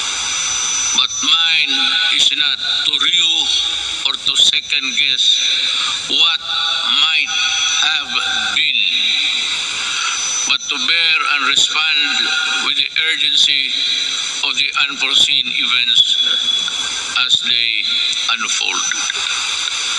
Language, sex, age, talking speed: Filipino, male, 50-69, 85 wpm